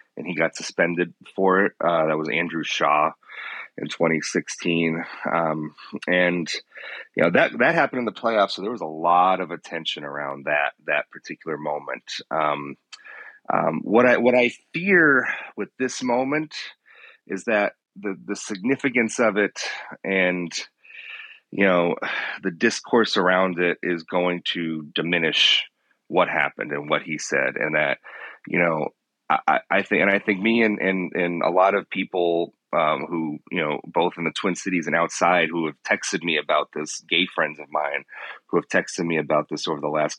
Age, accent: 30-49, American